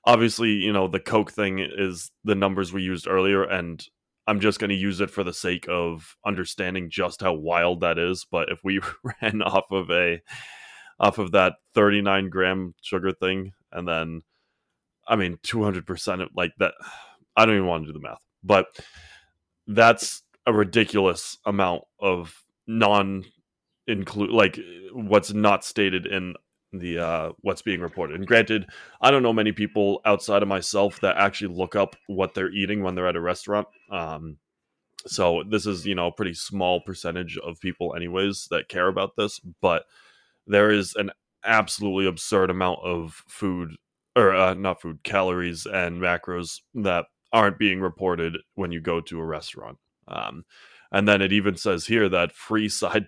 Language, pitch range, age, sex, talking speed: English, 90-105 Hz, 20-39, male, 175 wpm